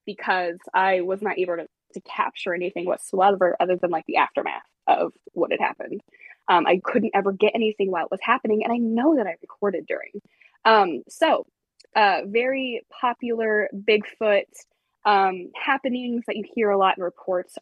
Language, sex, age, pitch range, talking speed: English, female, 20-39, 185-225 Hz, 175 wpm